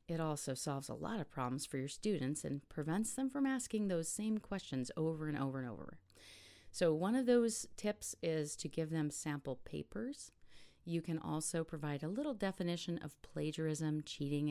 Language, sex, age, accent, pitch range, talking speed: English, female, 40-59, American, 140-170 Hz, 180 wpm